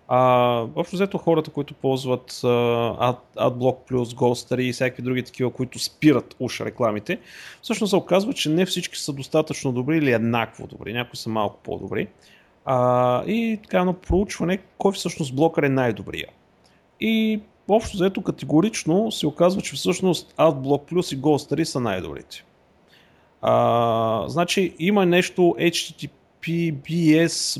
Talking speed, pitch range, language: 140 wpm, 125-165 Hz, Bulgarian